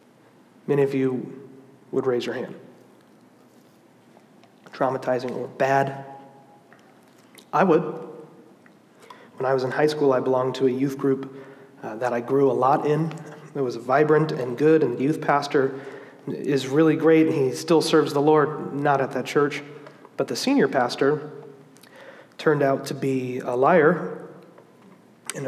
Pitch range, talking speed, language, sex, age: 135-155 Hz, 150 wpm, English, male, 30-49